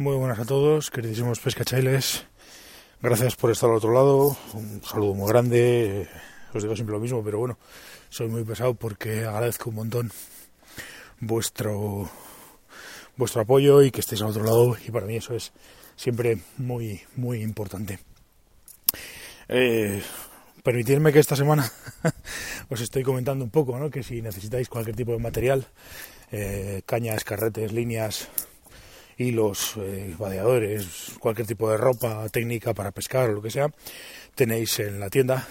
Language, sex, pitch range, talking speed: Spanish, male, 110-130 Hz, 150 wpm